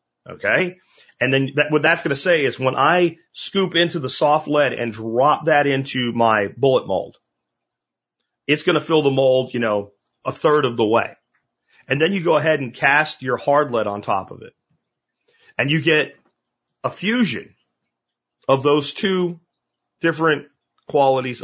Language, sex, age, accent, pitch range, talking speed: English, male, 40-59, American, 120-150 Hz, 170 wpm